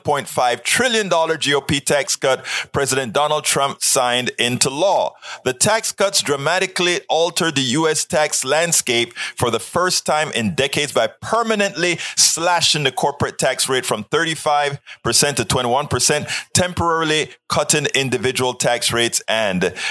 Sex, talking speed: male, 130 wpm